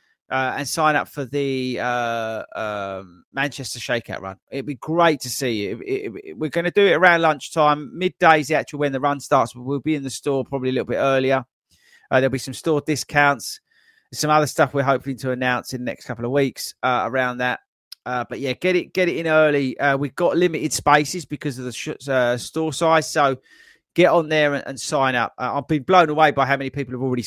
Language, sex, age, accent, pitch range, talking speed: English, male, 30-49, British, 125-165 Hz, 225 wpm